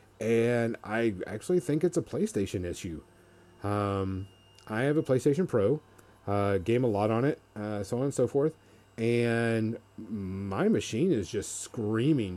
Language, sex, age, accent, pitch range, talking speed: English, male, 30-49, American, 95-120 Hz, 155 wpm